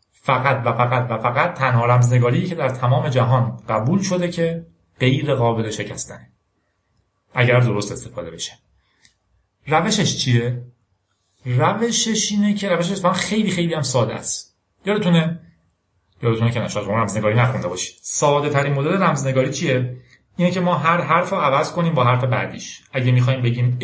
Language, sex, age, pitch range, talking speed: Persian, male, 40-59, 105-145 Hz, 150 wpm